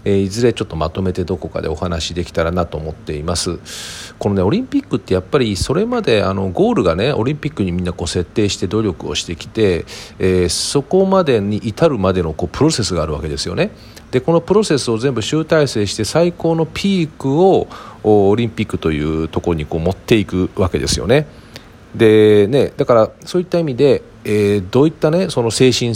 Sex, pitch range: male, 85-135 Hz